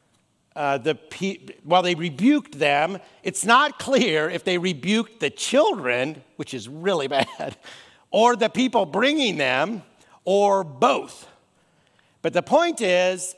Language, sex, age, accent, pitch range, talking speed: English, male, 50-69, American, 165-230 Hz, 125 wpm